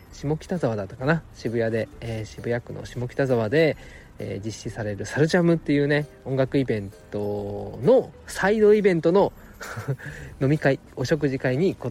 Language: Japanese